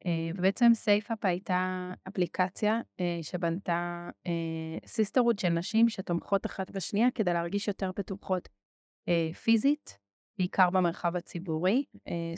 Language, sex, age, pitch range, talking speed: Hebrew, female, 20-39, 170-210 Hz, 115 wpm